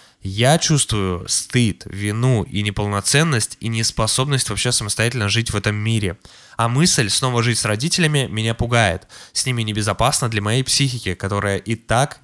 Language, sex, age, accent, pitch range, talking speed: Russian, male, 20-39, native, 105-130 Hz, 150 wpm